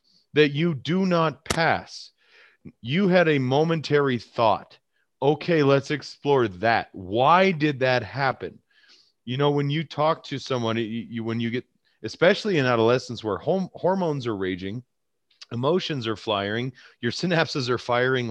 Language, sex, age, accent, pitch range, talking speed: English, male, 30-49, American, 110-140 Hz, 145 wpm